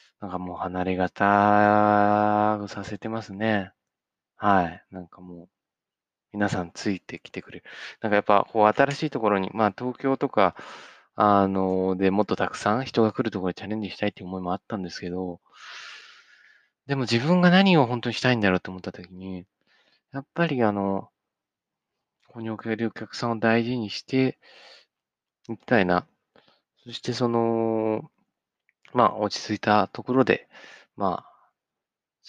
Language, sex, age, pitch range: Japanese, male, 20-39, 95-125 Hz